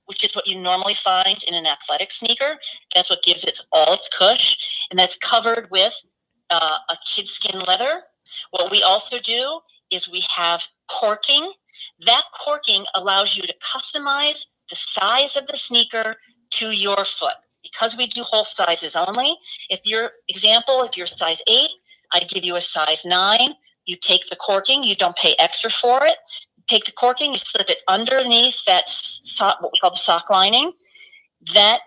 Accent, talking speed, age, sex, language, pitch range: American, 175 wpm, 40-59, female, English, 185-255 Hz